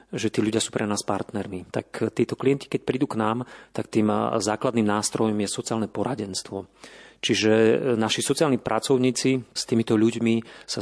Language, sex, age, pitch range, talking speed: Slovak, male, 40-59, 105-120 Hz, 160 wpm